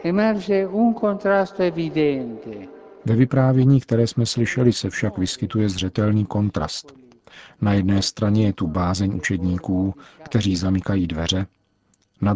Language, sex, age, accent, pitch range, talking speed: Czech, male, 50-69, native, 95-120 Hz, 100 wpm